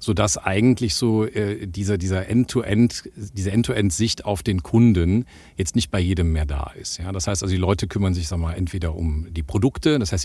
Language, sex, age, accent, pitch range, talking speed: German, male, 40-59, German, 90-115 Hz, 205 wpm